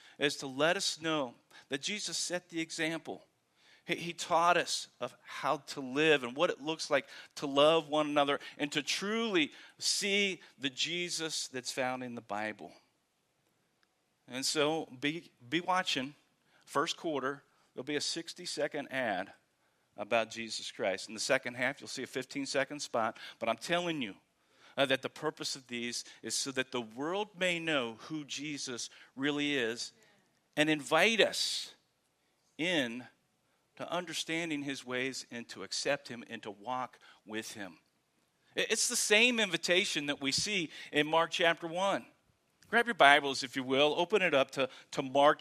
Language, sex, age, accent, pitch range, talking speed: English, male, 40-59, American, 135-165 Hz, 165 wpm